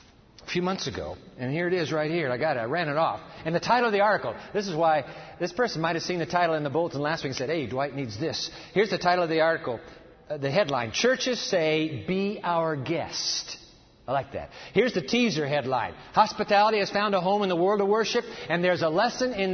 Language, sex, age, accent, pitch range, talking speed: English, male, 50-69, American, 160-205 Hz, 245 wpm